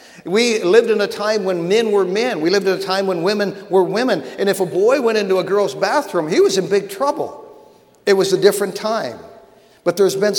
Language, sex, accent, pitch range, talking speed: English, male, American, 195-225 Hz, 230 wpm